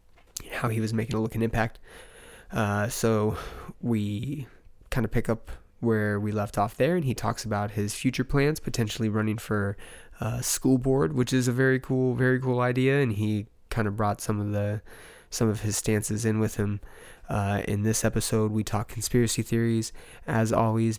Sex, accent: male, American